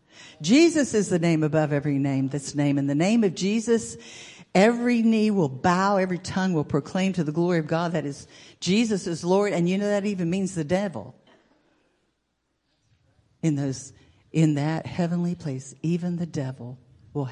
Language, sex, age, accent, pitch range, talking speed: English, female, 60-79, American, 135-185 Hz, 175 wpm